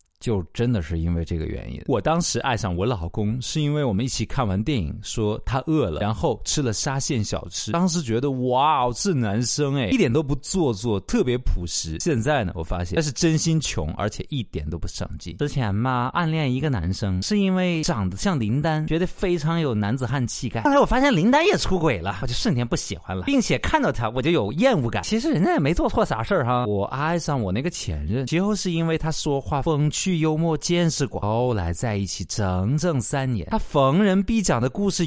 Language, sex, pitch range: Chinese, male, 100-165 Hz